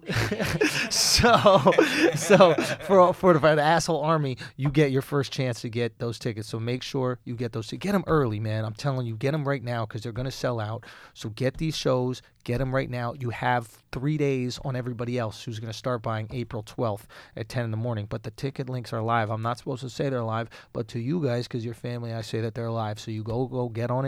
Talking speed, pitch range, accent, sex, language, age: 250 wpm, 115-135 Hz, American, male, English, 30-49